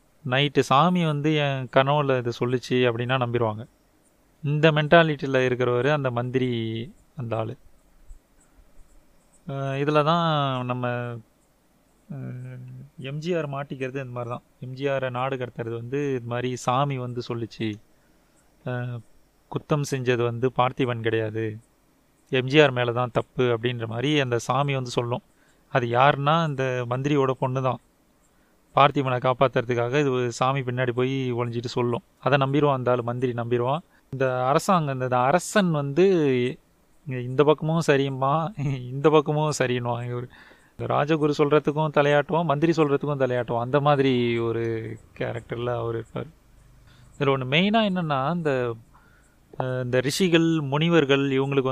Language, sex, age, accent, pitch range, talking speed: Tamil, male, 30-49, native, 125-145 Hz, 115 wpm